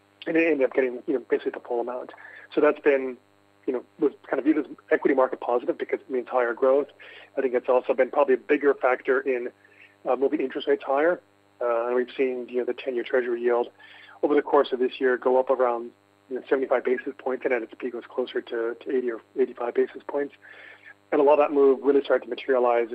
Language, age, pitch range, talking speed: English, 30-49, 120-145 Hz, 240 wpm